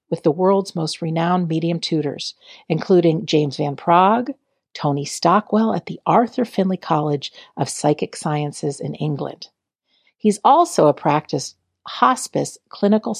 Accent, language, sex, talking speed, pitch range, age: American, English, female, 130 wpm, 150-210 Hz, 50-69